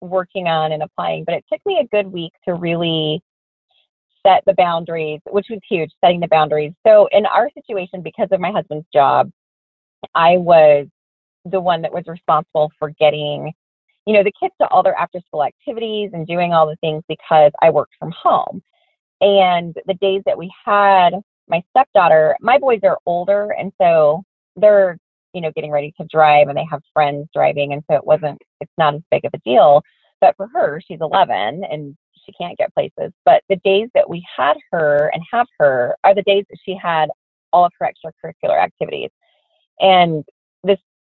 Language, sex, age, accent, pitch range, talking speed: English, female, 30-49, American, 155-200 Hz, 190 wpm